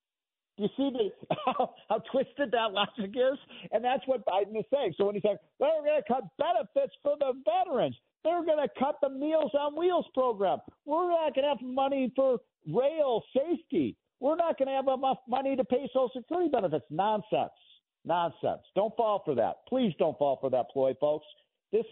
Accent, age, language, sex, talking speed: American, 50-69, English, male, 190 wpm